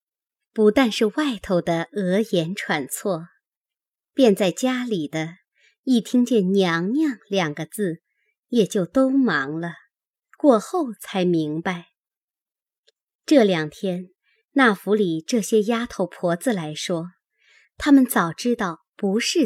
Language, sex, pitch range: Chinese, male, 180-265 Hz